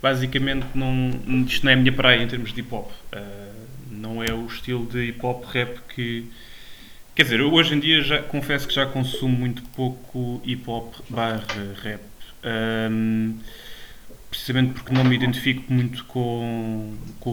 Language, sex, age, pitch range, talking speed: English, male, 20-39, 115-130 Hz, 155 wpm